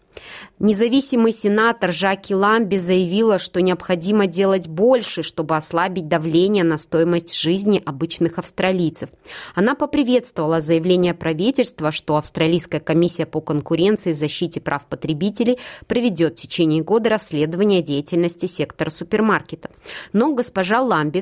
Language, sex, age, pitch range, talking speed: Russian, female, 20-39, 160-200 Hz, 115 wpm